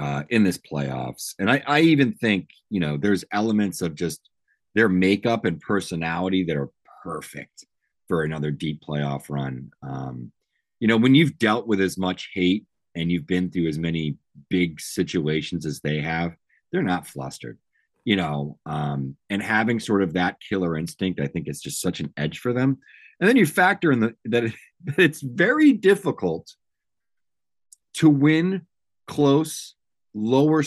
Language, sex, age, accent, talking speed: English, male, 40-59, American, 165 wpm